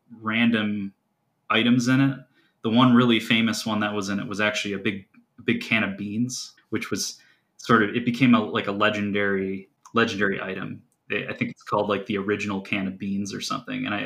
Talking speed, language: 200 wpm, English